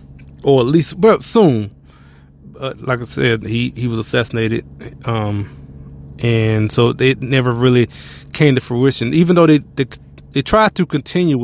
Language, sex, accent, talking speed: English, male, American, 155 wpm